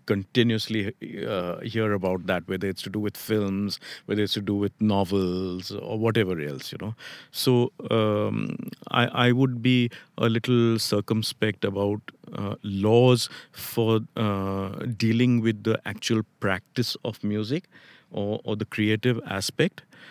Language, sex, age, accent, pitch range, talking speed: English, male, 50-69, Indian, 100-125 Hz, 145 wpm